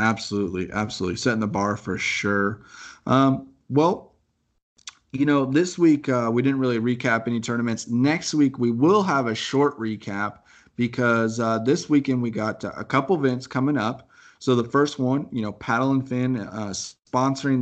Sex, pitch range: male, 110-130 Hz